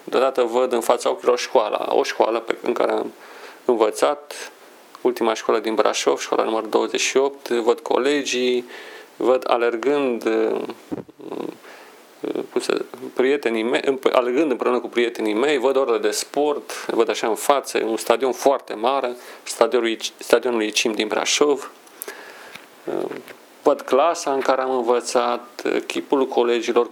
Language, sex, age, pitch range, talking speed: Romanian, male, 40-59, 120-200 Hz, 125 wpm